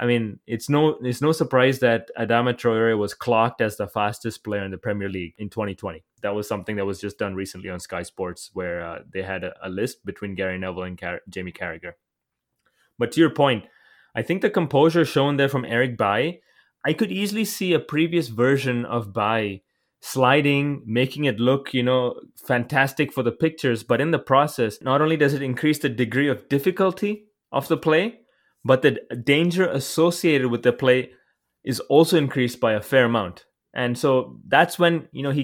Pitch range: 115-155 Hz